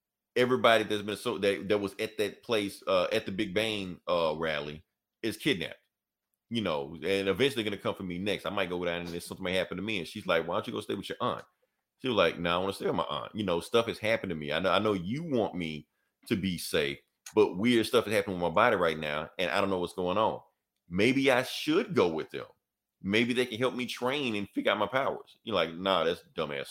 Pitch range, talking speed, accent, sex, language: 95-125 Hz, 265 wpm, American, male, English